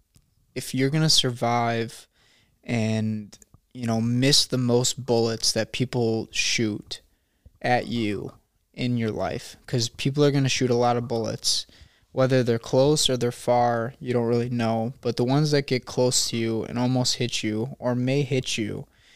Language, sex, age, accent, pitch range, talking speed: English, male, 20-39, American, 110-130 Hz, 175 wpm